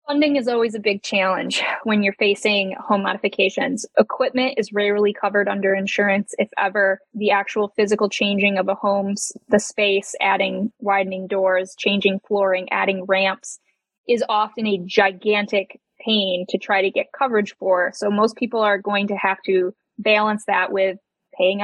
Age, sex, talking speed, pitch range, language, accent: 10-29, female, 160 wpm, 200-230 Hz, English, American